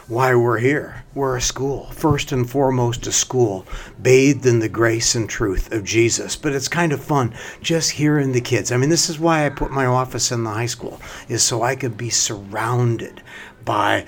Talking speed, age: 205 wpm, 60-79